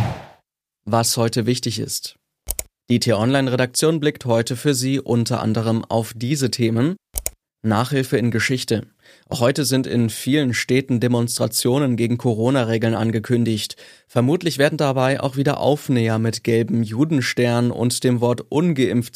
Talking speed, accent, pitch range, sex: 125 wpm, German, 115-135 Hz, male